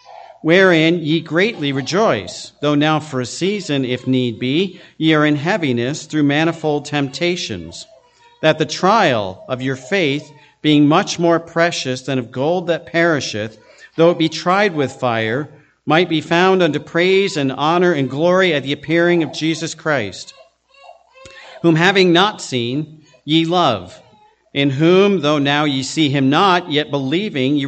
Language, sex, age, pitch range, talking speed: English, male, 50-69, 135-175 Hz, 155 wpm